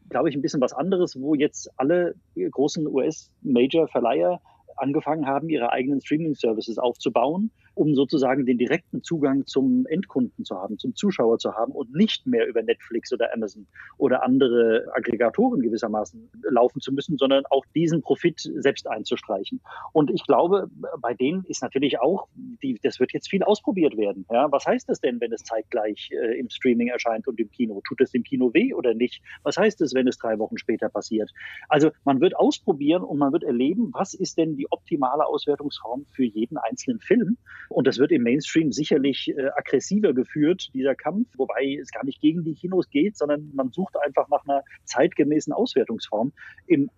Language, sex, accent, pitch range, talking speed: German, male, German, 125-205 Hz, 180 wpm